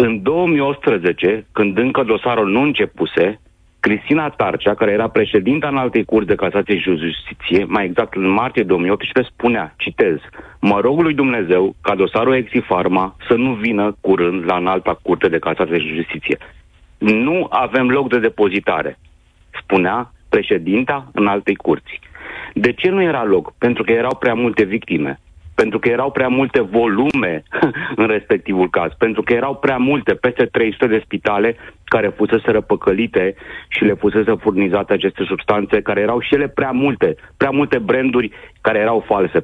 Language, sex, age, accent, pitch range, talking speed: Romanian, male, 40-59, native, 95-130 Hz, 160 wpm